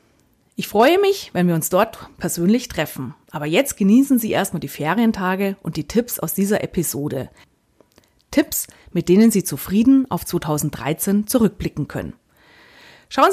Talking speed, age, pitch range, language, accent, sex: 145 wpm, 30-49, 170-240 Hz, German, German, female